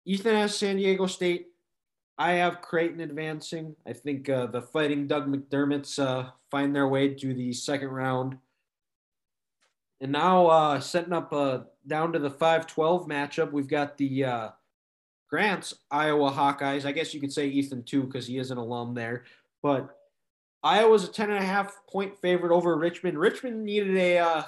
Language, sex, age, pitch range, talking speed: English, male, 20-39, 140-180 Hz, 175 wpm